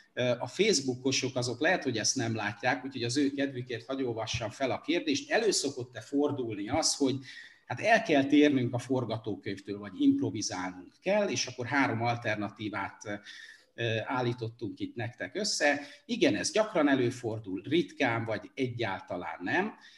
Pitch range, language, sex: 110-145 Hz, Hungarian, male